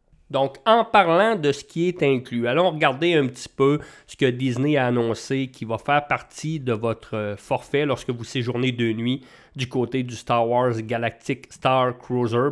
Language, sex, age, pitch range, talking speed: English, male, 30-49, 120-145 Hz, 180 wpm